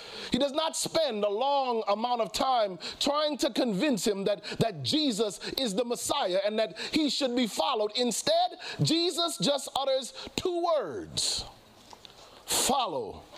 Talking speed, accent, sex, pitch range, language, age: 145 wpm, American, male, 210-285 Hz, English, 40-59